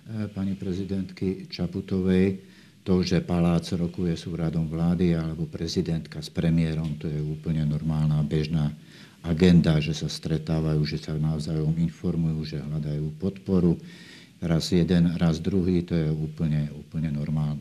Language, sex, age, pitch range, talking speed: Slovak, male, 50-69, 80-95 Hz, 135 wpm